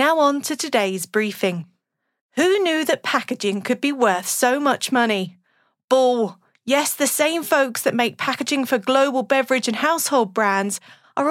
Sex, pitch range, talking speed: female, 210-285 Hz, 160 wpm